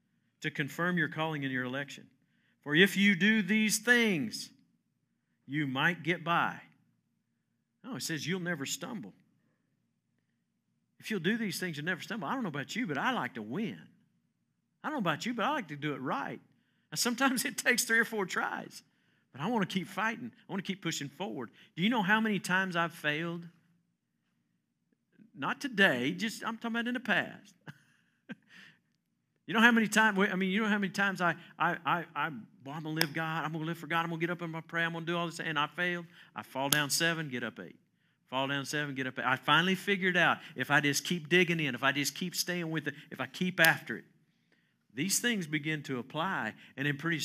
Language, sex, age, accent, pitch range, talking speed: English, male, 50-69, American, 150-200 Hz, 220 wpm